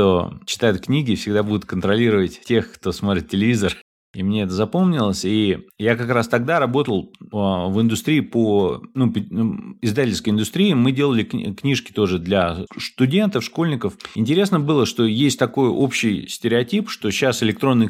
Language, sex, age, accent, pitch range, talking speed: Russian, male, 30-49, native, 100-130 Hz, 145 wpm